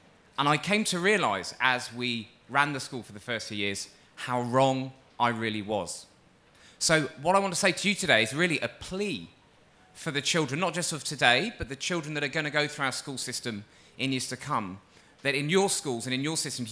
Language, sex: English, male